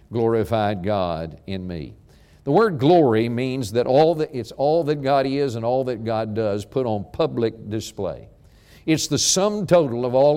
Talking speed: 180 wpm